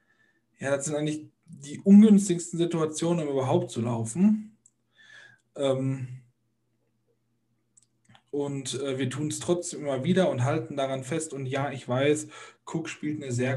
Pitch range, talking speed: 120-140 Hz, 140 wpm